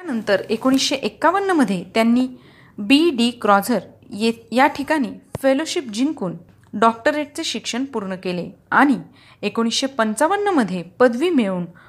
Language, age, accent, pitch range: Marathi, 30-49, native, 200-265 Hz